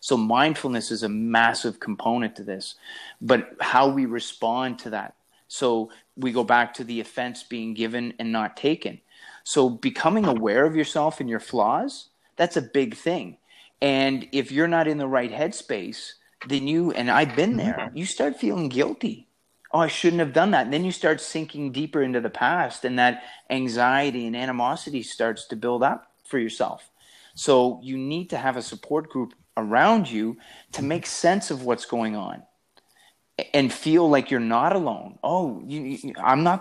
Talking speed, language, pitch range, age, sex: 180 wpm, English, 120-150 Hz, 30-49, male